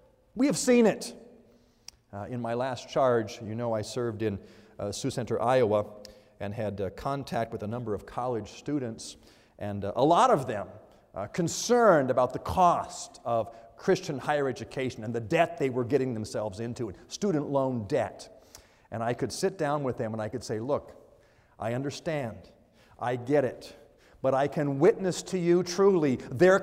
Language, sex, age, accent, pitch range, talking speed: English, male, 50-69, American, 110-175 Hz, 180 wpm